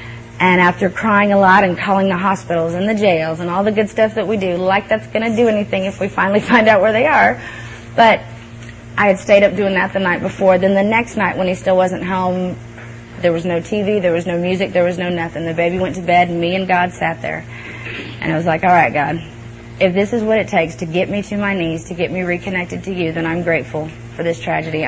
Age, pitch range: 30-49, 165-200 Hz